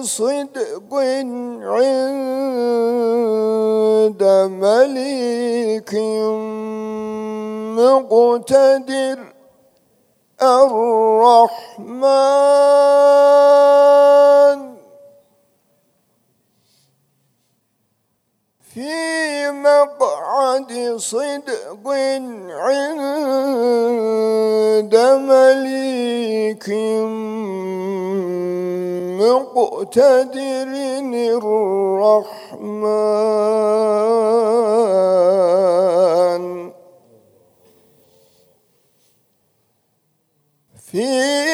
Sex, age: male, 50-69